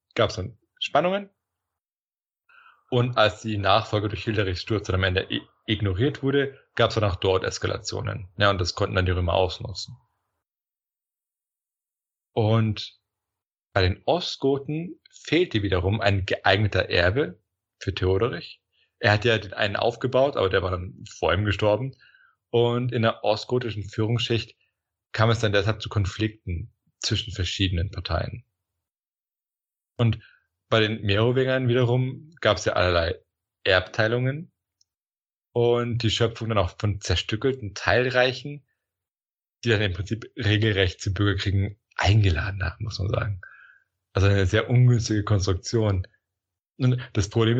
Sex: male